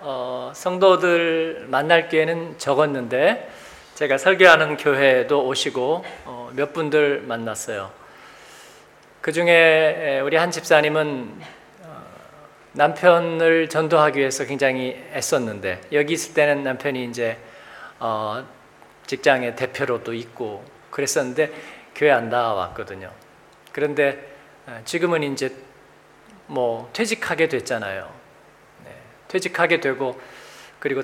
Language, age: Korean, 40-59